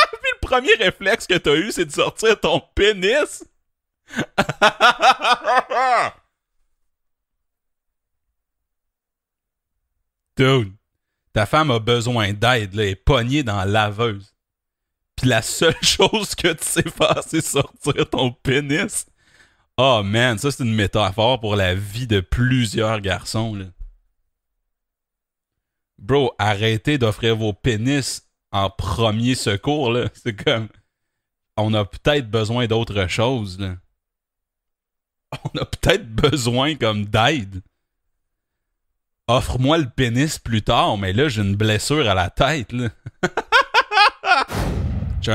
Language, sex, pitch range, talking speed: French, male, 95-135 Hz, 115 wpm